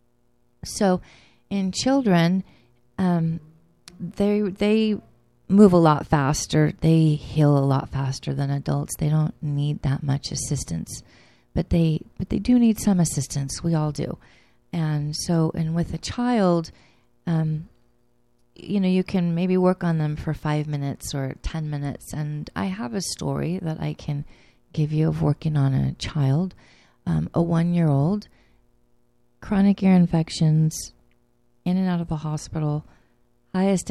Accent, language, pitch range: American, English, 140-185 Hz